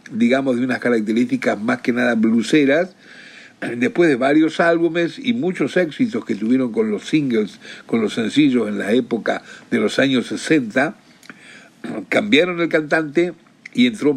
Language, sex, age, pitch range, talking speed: Spanish, male, 60-79, 140-225 Hz, 150 wpm